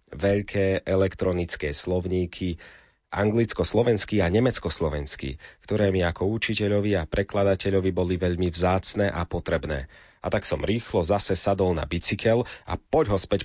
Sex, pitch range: male, 85-105 Hz